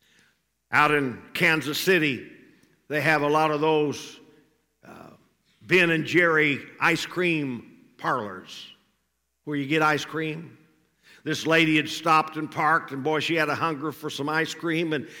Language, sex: English, male